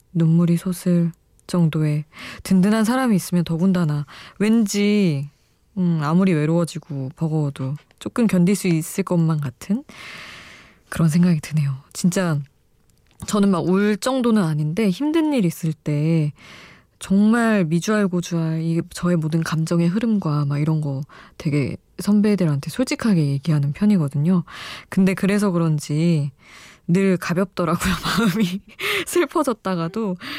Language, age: Korean, 20-39